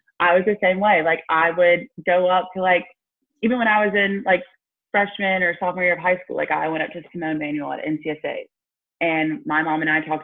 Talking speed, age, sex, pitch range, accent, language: 235 wpm, 20-39, female, 155-185 Hz, American, English